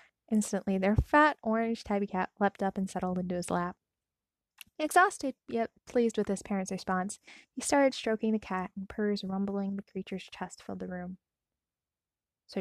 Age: 10-29